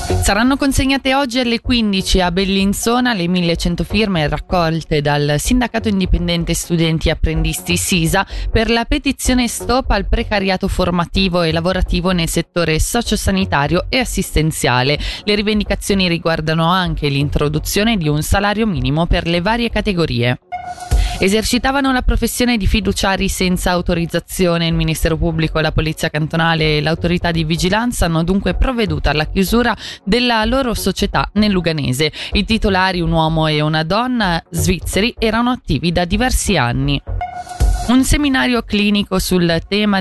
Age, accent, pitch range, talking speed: 20-39, native, 160-215 Hz, 135 wpm